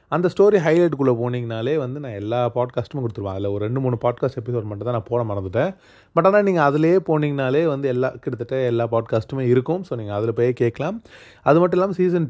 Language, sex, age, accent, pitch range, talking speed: Tamil, male, 30-49, native, 115-155 Hz, 200 wpm